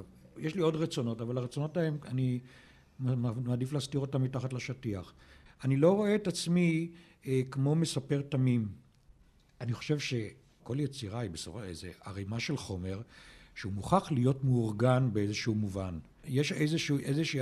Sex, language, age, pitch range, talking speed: male, Hebrew, 60-79, 120-155 Hz, 140 wpm